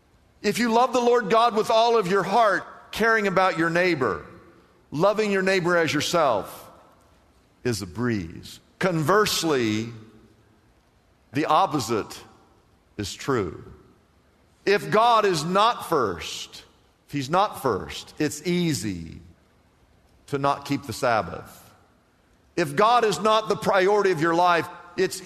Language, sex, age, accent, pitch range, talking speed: English, male, 50-69, American, 115-195 Hz, 130 wpm